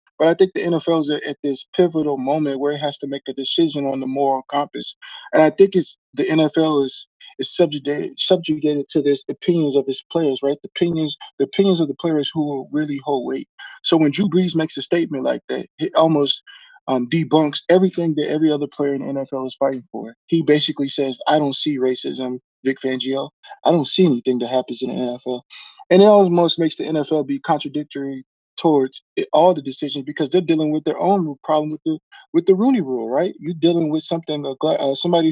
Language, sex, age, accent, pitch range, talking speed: English, male, 20-39, American, 140-175 Hz, 215 wpm